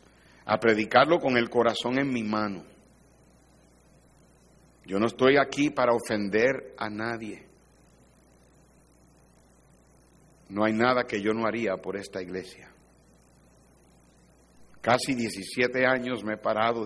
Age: 60-79